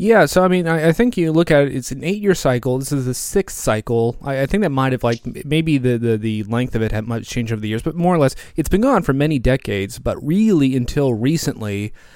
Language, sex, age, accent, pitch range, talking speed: English, male, 30-49, American, 115-145 Hz, 265 wpm